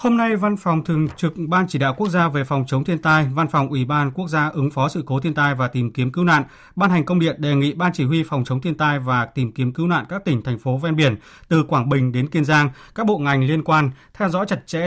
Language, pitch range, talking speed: Vietnamese, 135-170 Hz, 290 wpm